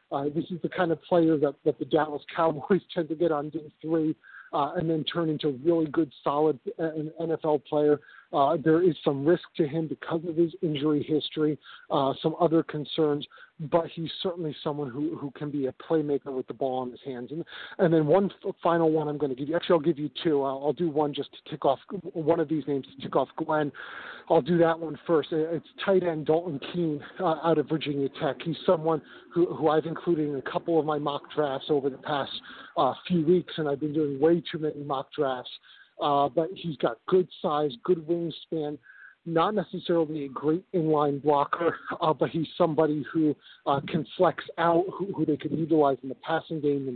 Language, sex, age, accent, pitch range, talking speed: English, male, 40-59, American, 145-170 Hz, 220 wpm